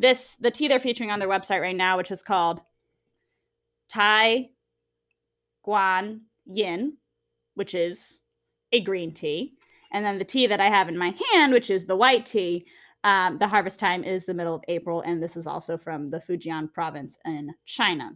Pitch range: 180-235 Hz